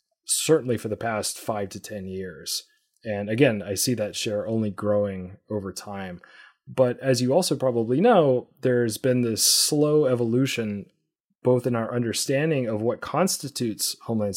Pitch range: 110-130 Hz